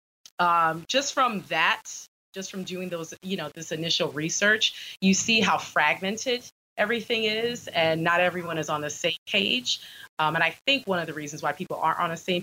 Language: English